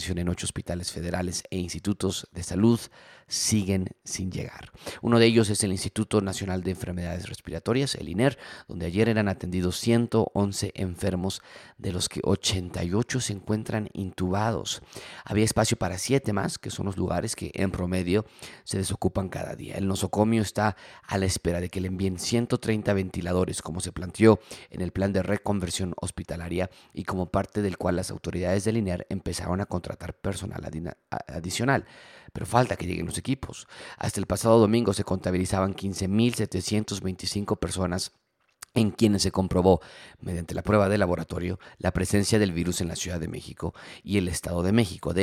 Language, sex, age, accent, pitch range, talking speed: Spanish, male, 40-59, Mexican, 90-105 Hz, 165 wpm